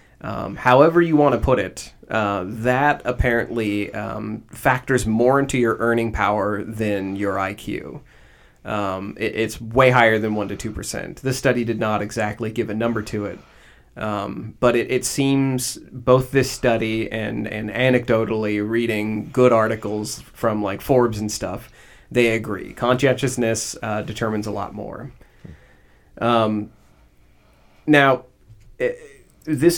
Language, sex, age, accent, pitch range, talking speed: English, male, 30-49, American, 105-125 Hz, 140 wpm